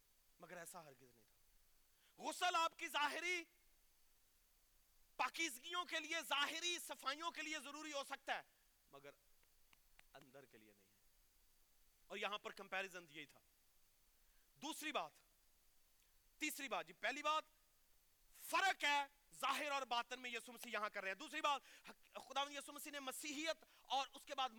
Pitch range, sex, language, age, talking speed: 210-305 Hz, male, Urdu, 40-59, 150 wpm